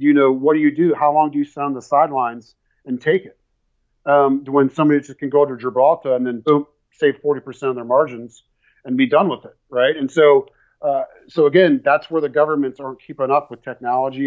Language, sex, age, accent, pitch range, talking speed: English, male, 40-59, American, 125-165 Hz, 225 wpm